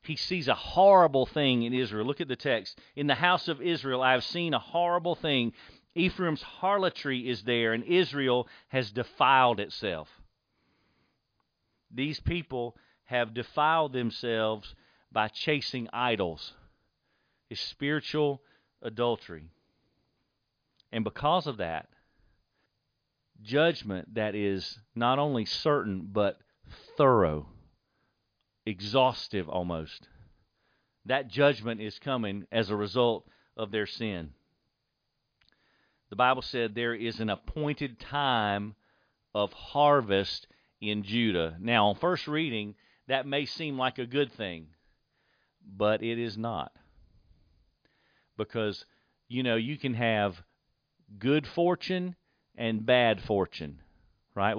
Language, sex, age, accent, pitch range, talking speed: English, male, 40-59, American, 105-145 Hz, 115 wpm